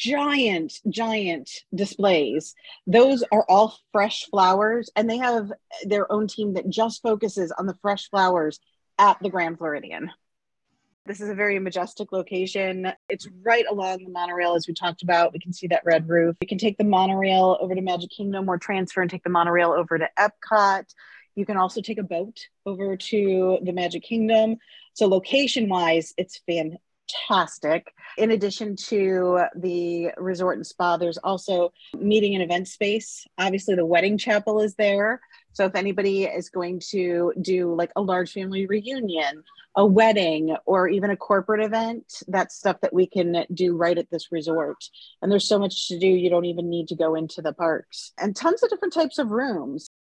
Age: 30-49